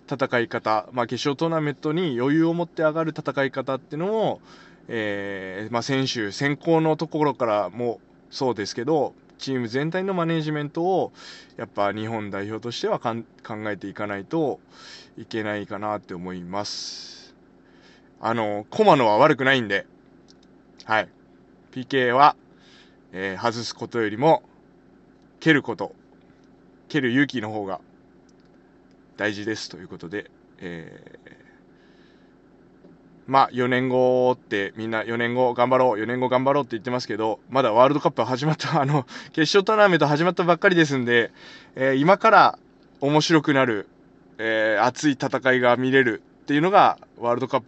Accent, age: native, 20-39